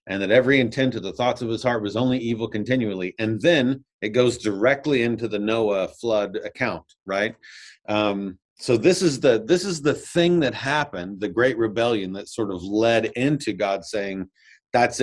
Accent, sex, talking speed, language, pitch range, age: American, male, 190 wpm, English, 110-135 Hz, 40-59